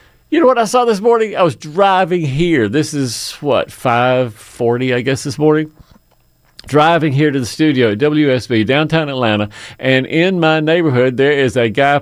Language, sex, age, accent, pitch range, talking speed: English, male, 50-69, American, 115-155 Hz, 180 wpm